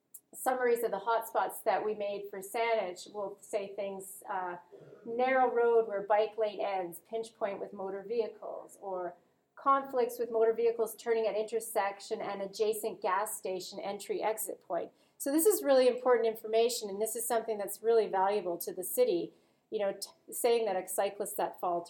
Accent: American